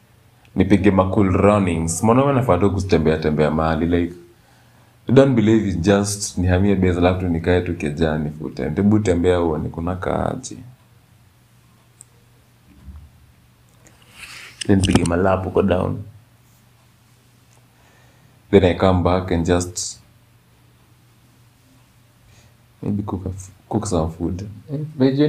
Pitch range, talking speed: 90-120 Hz, 115 wpm